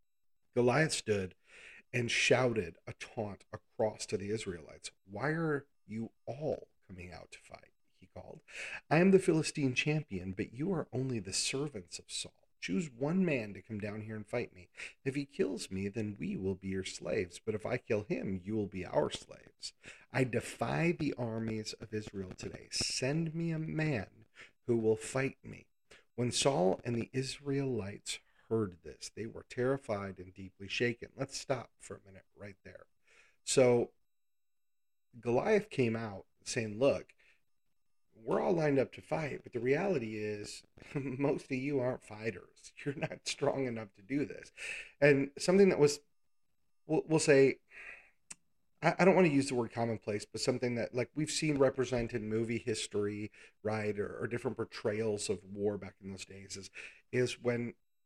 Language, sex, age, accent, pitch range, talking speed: English, male, 40-59, American, 105-140 Hz, 170 wpm